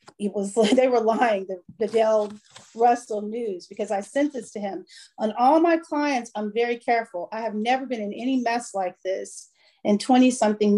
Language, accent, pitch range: Russian, American, 210-255 Hz